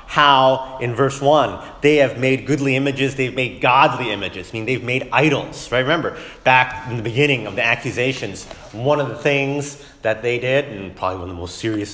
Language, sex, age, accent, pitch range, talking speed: English, male, 30-49, American, 120-155 Hz, 205 wpm